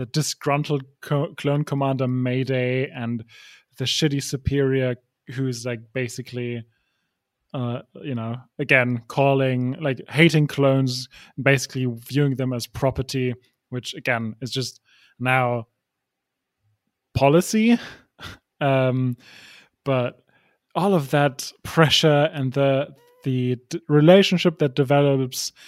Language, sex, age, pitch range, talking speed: English, male, 20-39, 125-145 Hz, 105 wpm